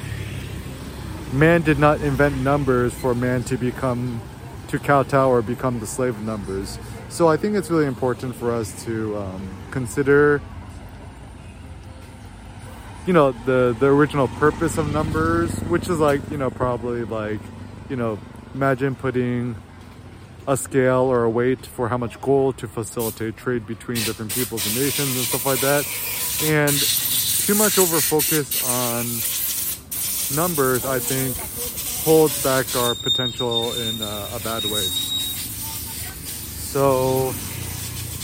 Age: 20-39